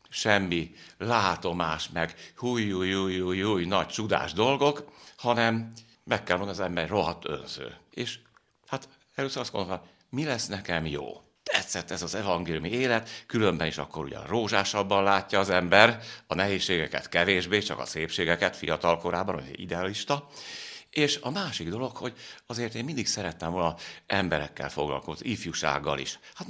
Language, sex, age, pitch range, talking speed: Hungarian, male, 60-79, 85-115 Hz, 140 wpm